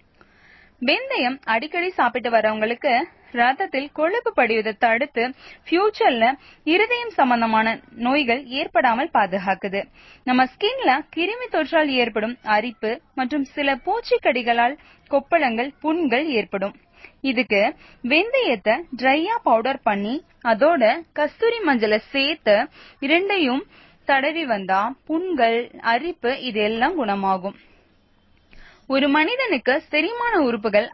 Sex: female